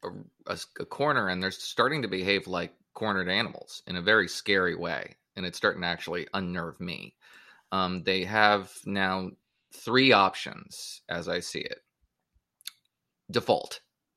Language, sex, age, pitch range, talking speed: English, male, 20-39, 90-100 Hz, 145 wpm